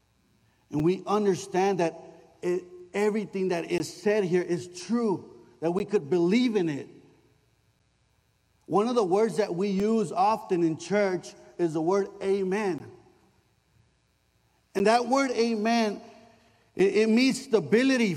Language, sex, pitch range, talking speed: English, male, 215-255 Hz, 130 wpm